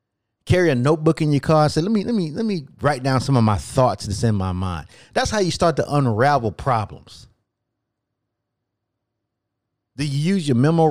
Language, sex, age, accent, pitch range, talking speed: English, male, 30-49, American, 105-140 Hz, 200 wpm